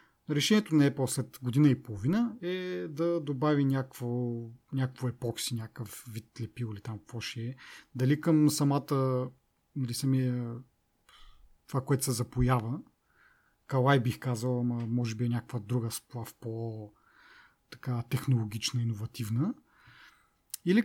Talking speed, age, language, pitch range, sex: 120 wpm, 30-49, Bulgarian, 120-165 Hz, male